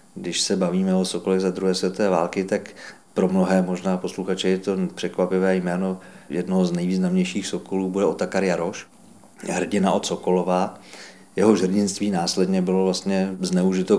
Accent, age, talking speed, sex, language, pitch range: native, 40-59, 145 wpm, male, Czech, 95-105 Hz